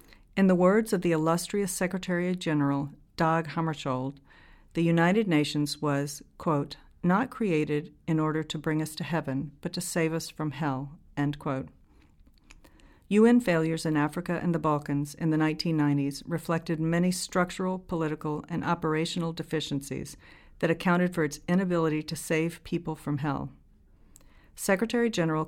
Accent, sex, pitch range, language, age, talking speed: American, female, 145-170 Hz, English, 50-69, 145 wpm